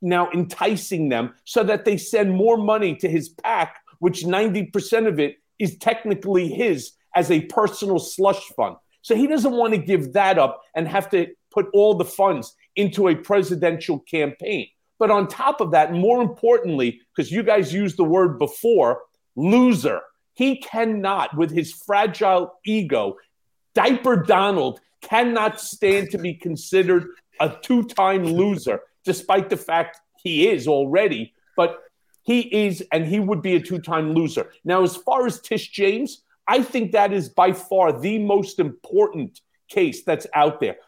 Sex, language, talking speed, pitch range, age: male, English, 160 wpm, 175-220 Hz, 50-69